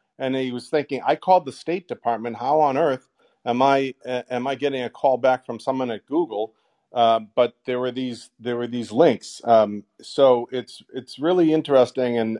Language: English